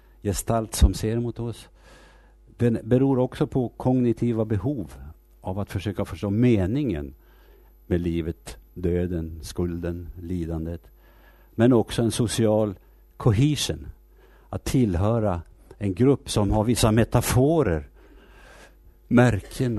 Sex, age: male, 60-79